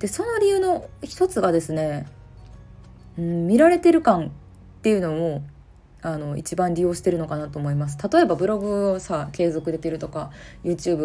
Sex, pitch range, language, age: female, 150-205 Hz, Japanese, 20-39